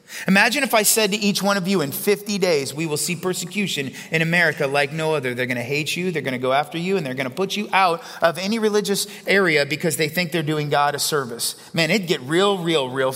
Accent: American